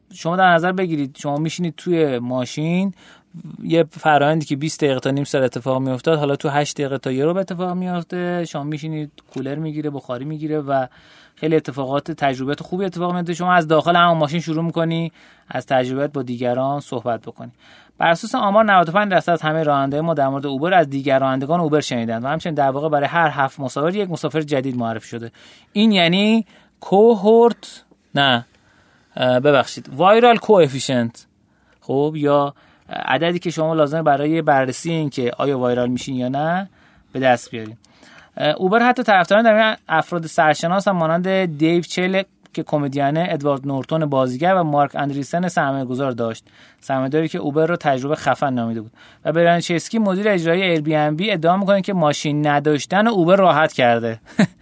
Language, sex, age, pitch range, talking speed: Persian, male, 30-49, 135-175 Hz, 165 wpm